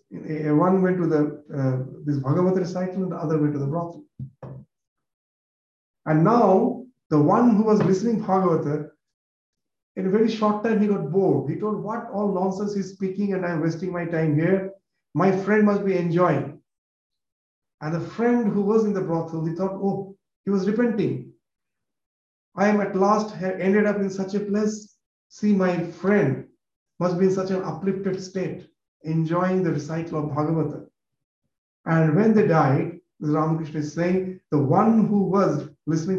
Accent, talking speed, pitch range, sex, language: Indian, 170 wpm, 155-195 Hz, male, English